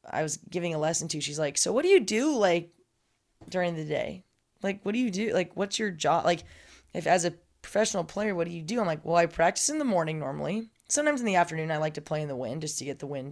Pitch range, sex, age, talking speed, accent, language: 165-220 Hz, female, 20-39, 275 wpm, American, English